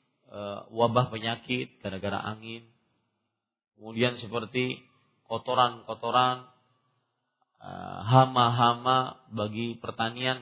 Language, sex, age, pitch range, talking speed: Malay, male, 40-59, 115-150 Hz, 60 wpm